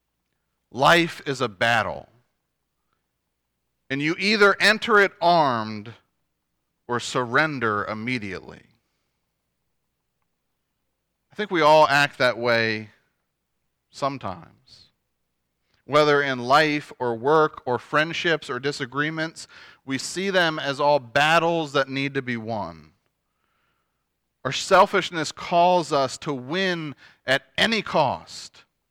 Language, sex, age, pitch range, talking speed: English, male, 40-59, 125-190 Hz, 105 wpm